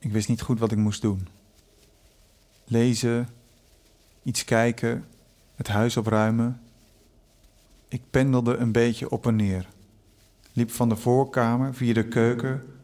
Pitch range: 105-135 Hz